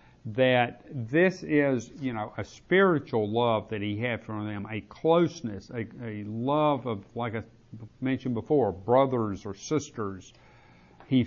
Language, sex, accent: English, male, American